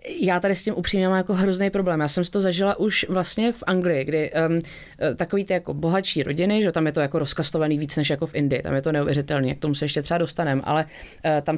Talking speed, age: 255 wpm, 20-39